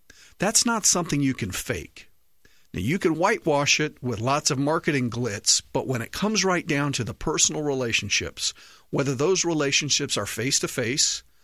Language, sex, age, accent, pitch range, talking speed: English, male, 50-69, American, 130-160 Hz, 165 wpm